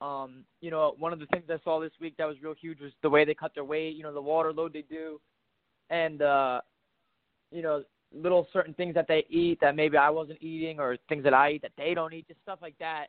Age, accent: 20-39, American